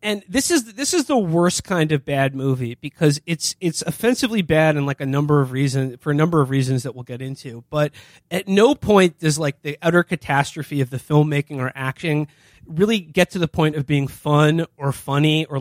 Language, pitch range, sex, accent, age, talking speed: English, 135-170 Hz, male, American, 20-39, 225 wpm